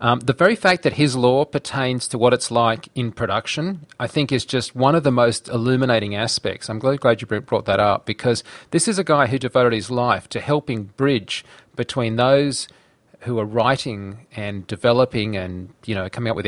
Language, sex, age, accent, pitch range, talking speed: English, male, 40-59, Australian, 110-130 Hz, 205 wpm